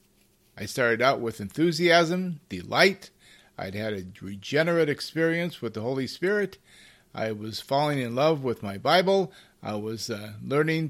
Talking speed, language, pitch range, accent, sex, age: 150 wpm, English, 115-165 Hz, American, male, 50-69